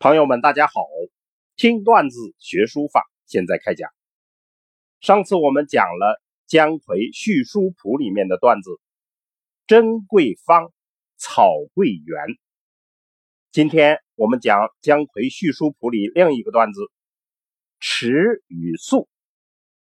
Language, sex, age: Chinese, male, 50-69